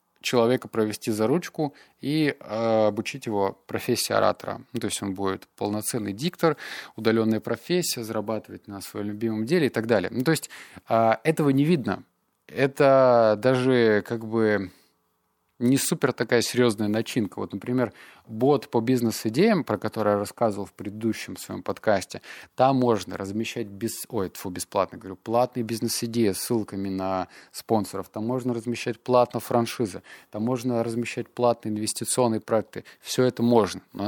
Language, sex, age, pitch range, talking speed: Russian, male, 20-39, 105-125 Hz, 150 wpm